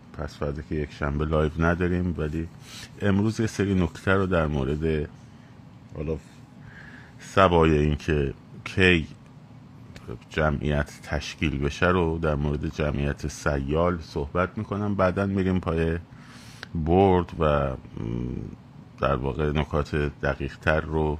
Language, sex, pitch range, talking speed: Persian, male, 75-105 Hz, 115 wpm